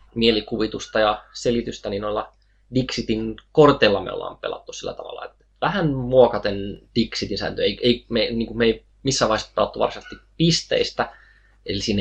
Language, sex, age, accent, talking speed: Finnish, male, 20-39, native, 150 wpm